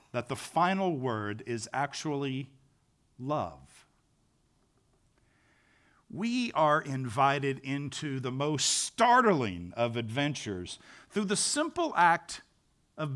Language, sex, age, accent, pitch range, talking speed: English, male, 50-69, American, 130-200 Hz, 95 wpm